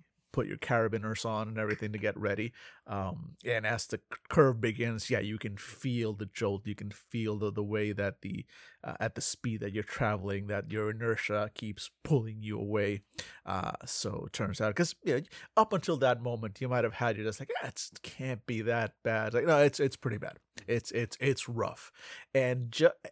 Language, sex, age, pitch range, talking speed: English, male, 30-49, 105-130 Hz, 210 wpm